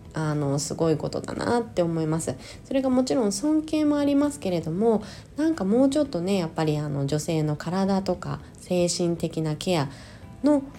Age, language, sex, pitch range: 20-39, Japanese, female, 150-210 Hz